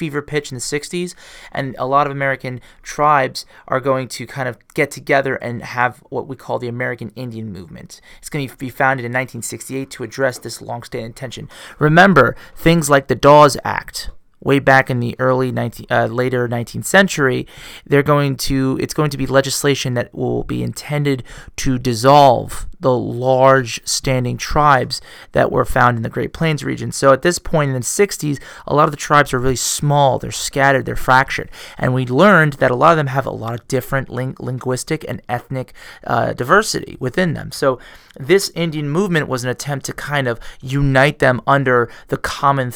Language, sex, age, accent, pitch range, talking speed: English, male, 30-49, American, 125-145 Hz, 190 wpm